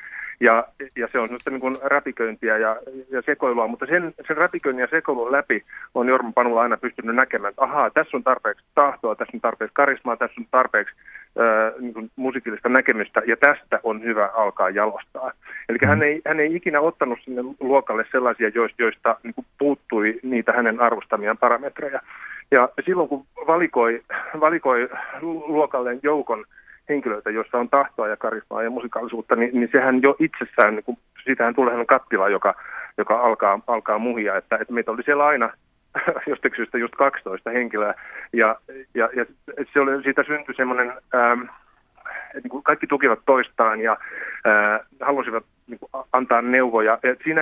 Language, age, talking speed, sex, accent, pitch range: Finnish, 30-49, 160 wpm, male, native, 115-140 Hz